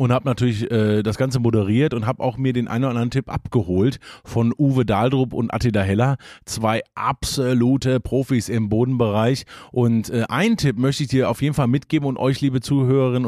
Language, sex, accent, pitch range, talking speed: German, male, German, 115-140 Hz, 195 wpm